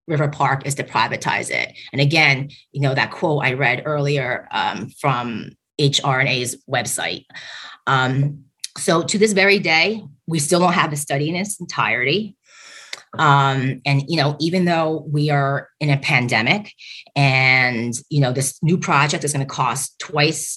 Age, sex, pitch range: 30-49, female, 135-165 Hz